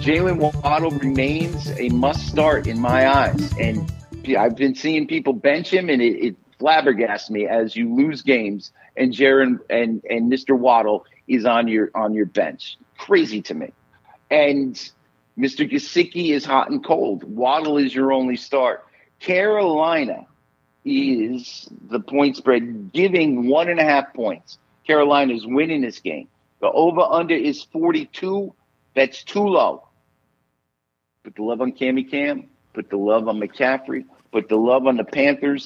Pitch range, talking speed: 115-160 Hz, 155 wpm